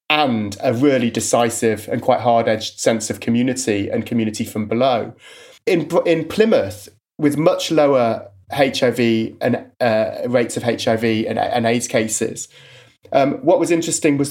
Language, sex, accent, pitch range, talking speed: English, male, British, 115-150 Hz, 145 wpm